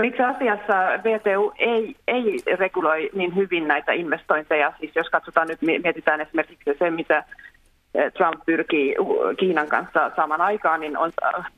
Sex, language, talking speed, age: female, Finnish, 135 wpm, 30-49